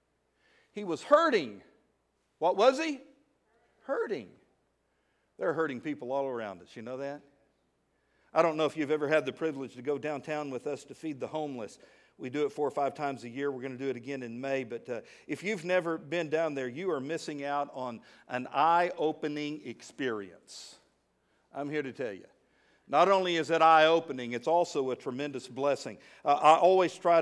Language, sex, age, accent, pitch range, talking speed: English, male, 50-69, American, 145-185 Hz, 190 wpm